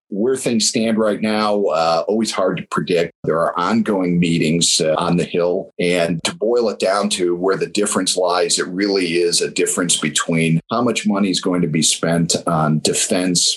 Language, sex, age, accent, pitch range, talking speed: English, male, 50-69, American, 80-90 Hz, 195 wpm